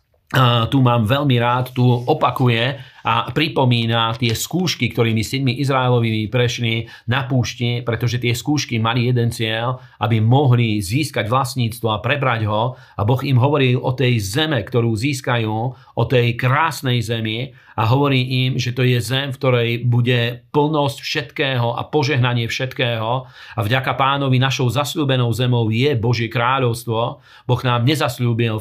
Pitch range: 115-130 Hz